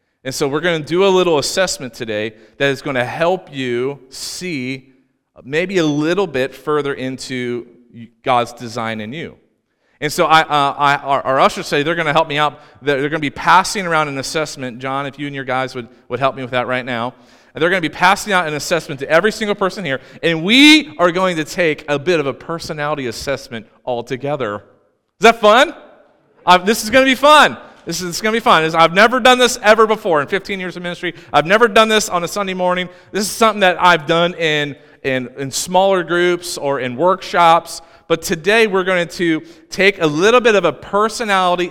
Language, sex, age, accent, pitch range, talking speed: English, male, 40-59, American, 135-190 Hz, 220 wpm